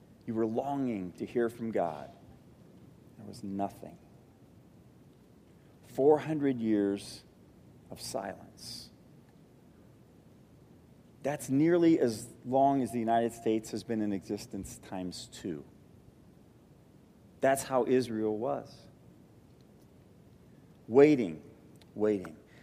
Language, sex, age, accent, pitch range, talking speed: English, male, 40-59, American, 115-145 Hz, 90 wpm